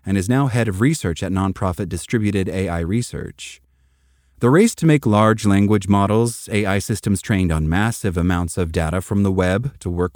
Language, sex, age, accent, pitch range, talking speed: English, male, 30-49, American, 90-120 Hz, 185 wpm